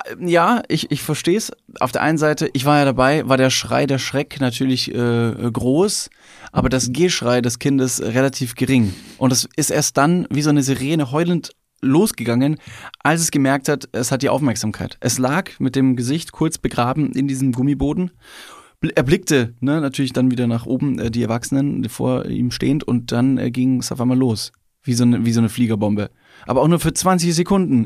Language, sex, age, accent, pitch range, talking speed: German, male, 20-39, German, 120-155 Hz, 200 wpm